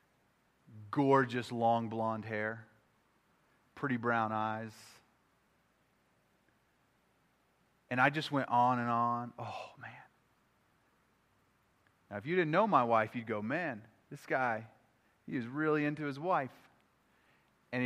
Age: 30-49